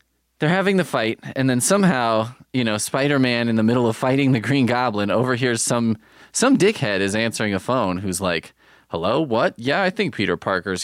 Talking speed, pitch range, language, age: 195 wpm, 95-135 Hz, English, 20-39